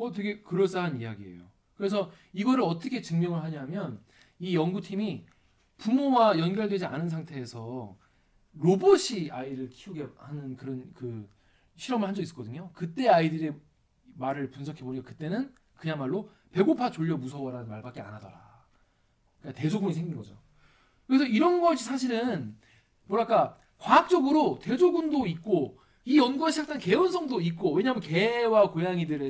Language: Korean